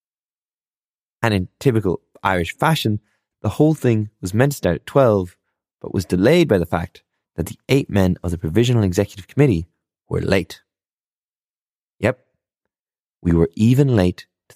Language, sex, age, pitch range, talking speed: English, male, 20-39, 90-120 Hz, 150 wpm